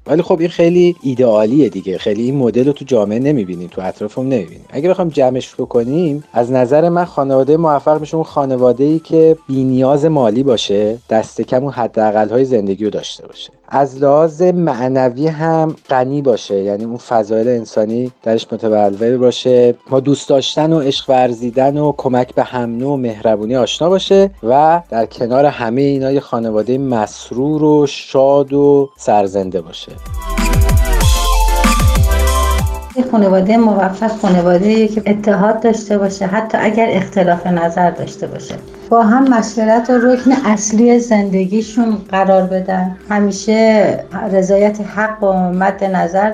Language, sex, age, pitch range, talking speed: Persian, male, 30-49, 125-195 Hz, 135 wpm